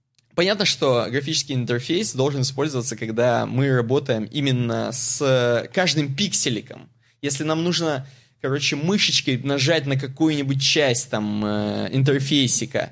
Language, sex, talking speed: Russian, male, 110 wpm